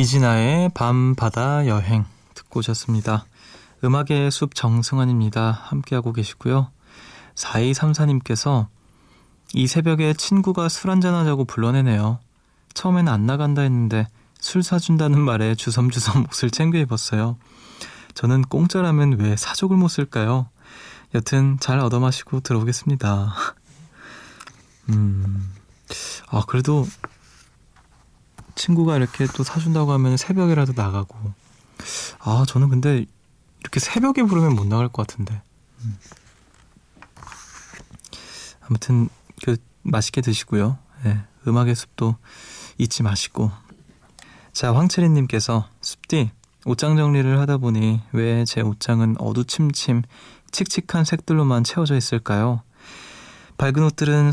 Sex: male